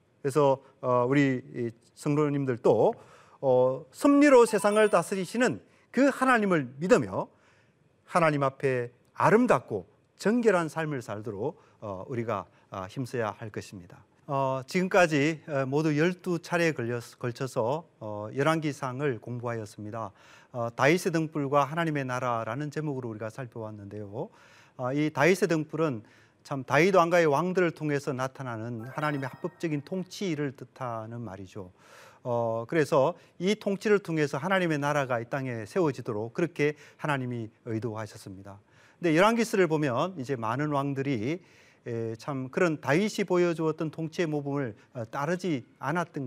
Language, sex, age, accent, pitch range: Korean, male, 40-59, native, 115-165 Hz